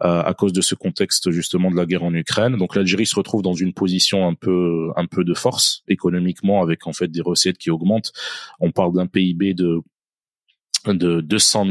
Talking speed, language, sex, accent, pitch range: 200 wpm, French, male, French, 90-100 Hz